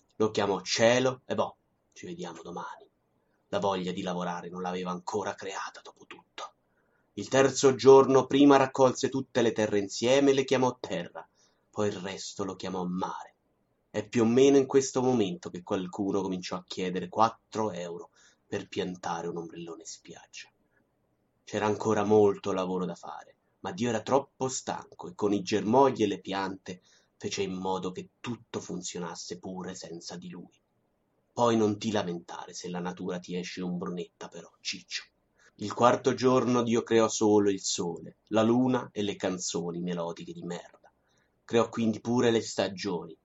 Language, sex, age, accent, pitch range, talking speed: Italian, male, 30-49, native, 90-120 Hz, 165 wpm